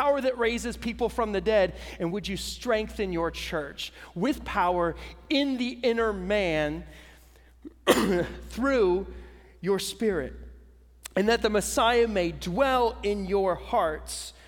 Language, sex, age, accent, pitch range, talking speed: English, male, 30-49, American, 175-240 Hz, 130 wpm